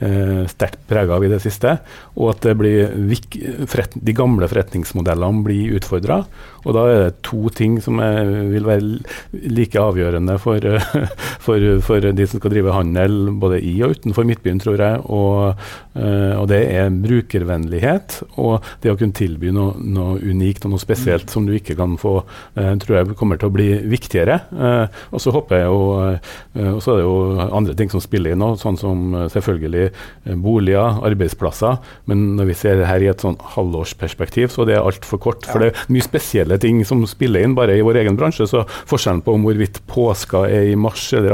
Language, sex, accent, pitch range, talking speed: English, male, Norwegian, 95-115 Hz, 190 wpm